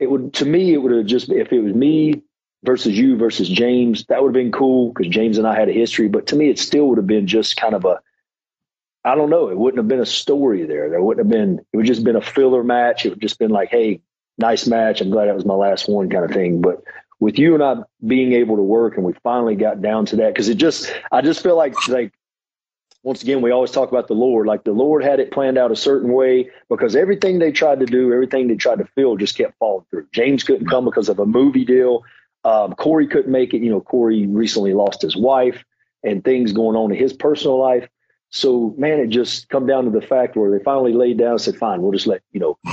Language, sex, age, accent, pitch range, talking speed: English, male, 40-59, American, 120-155 Hz, 260 wpm